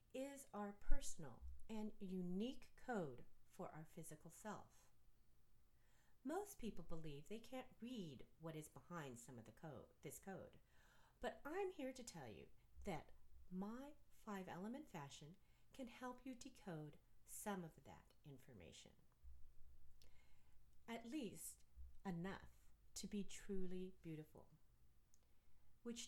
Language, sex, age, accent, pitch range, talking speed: English, female, 40-59, American, 145-230 Hz, 120 wpm